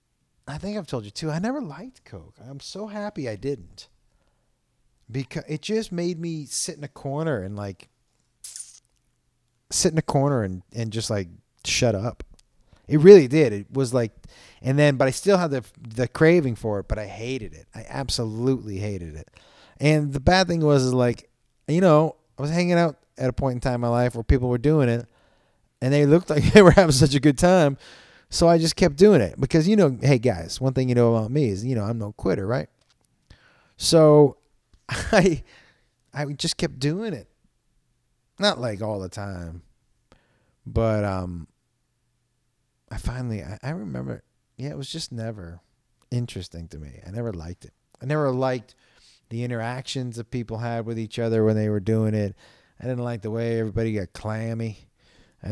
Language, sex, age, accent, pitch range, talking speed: English, male, 30-49, American, 110-150 Hz, 190 wpm